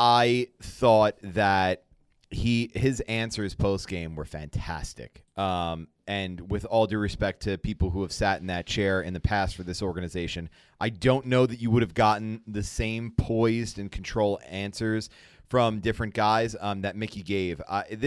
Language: English